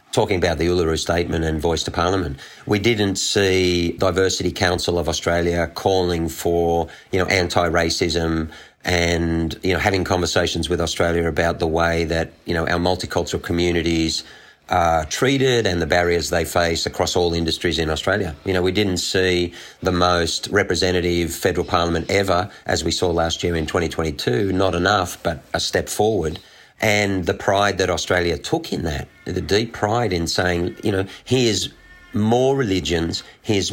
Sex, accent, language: male, Australian, English